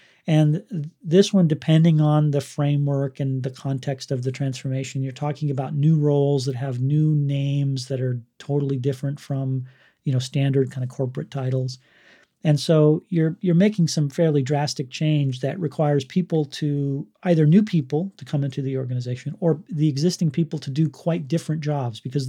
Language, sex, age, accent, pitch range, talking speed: English, male, 40-59, American, 135-160 Hz, 175 wpm